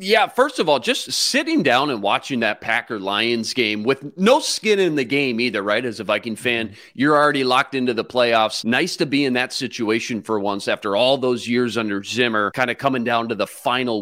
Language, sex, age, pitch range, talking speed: English, male, 30-49, 115-185 Hz, 220 wpm